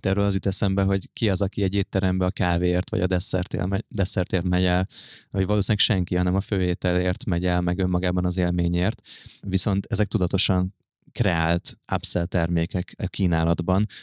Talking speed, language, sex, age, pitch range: 165 wpm, Hungarian, male, 20-39, 90-100 Hz